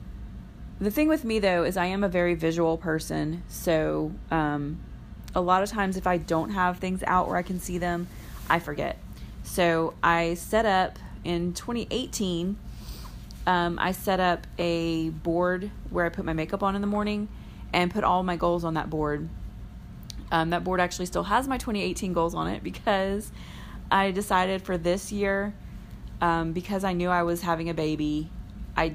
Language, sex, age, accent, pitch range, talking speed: English, female, 30-49, American, 160-185 Hz, 180 wpm